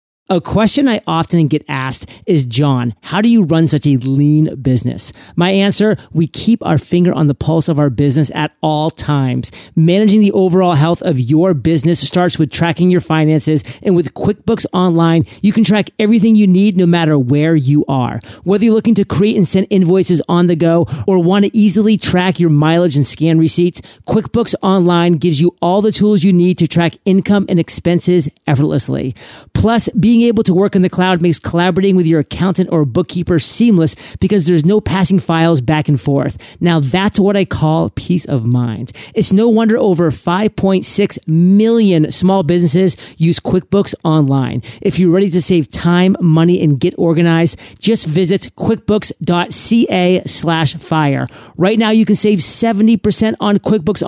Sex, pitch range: male, 155-195 Hz